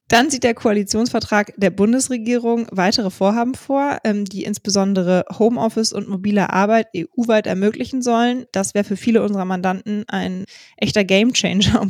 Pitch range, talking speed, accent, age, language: 180-215 Hz, 140 wpm, German, 20-39, German